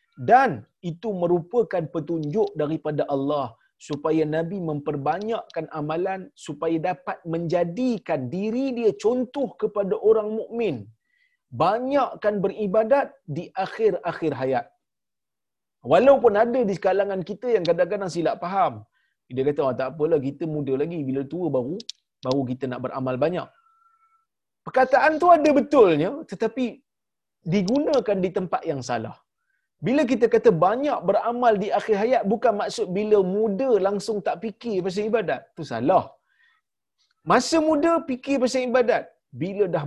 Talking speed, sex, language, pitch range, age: 130 wpm, male, Malayalam, 160-245 Hz, 30-49